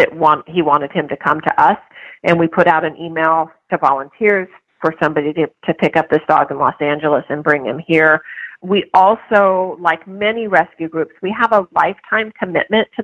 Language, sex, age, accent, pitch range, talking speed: English, female, 40-59, American, 160-200 Hz, 205 wpm